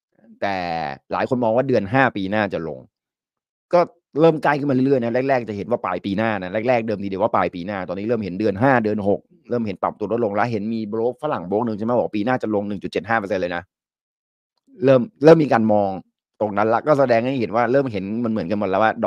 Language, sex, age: Thai, male, 30-49